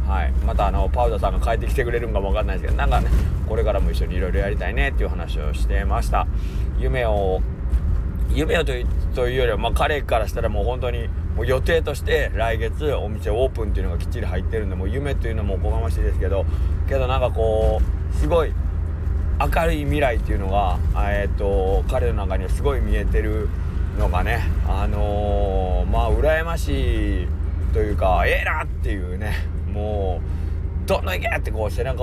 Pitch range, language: 80-95 Hz, Japanese